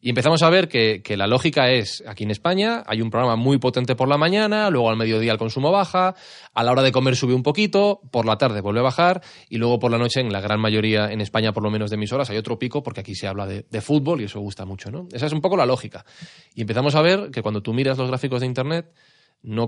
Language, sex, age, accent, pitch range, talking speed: Spanish, male, 20-39, Spanish, 110-140 Hz, 275 wpm